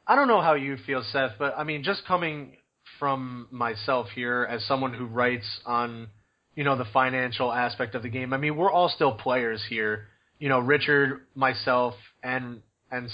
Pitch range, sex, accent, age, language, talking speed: 125-155 Hz, male, American, 30-49, English, 185 wpm